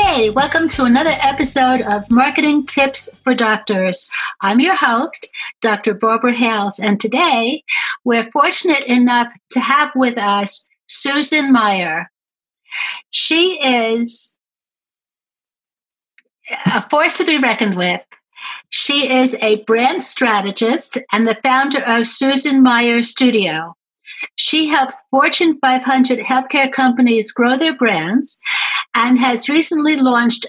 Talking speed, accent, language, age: 120 wpm, American, English, 60-79